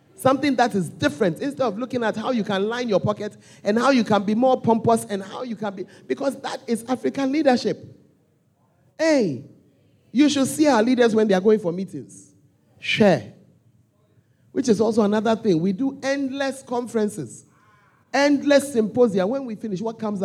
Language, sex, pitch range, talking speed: English, male, 185-255 Hz, 180 wpm